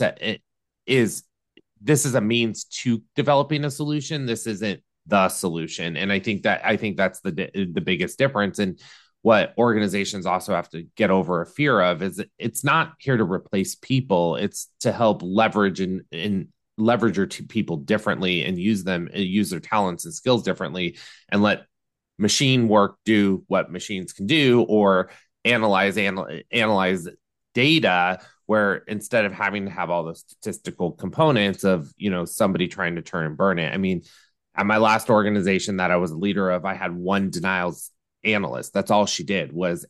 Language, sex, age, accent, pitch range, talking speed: English, male, 20-39, American, 95-120 Hz, 175 wpm